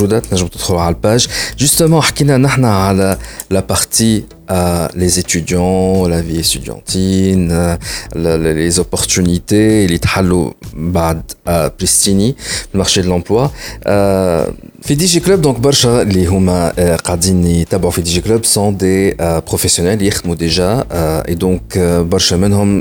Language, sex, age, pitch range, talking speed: Arabic, male, 40-59, 85-105 Hz, 120 wpm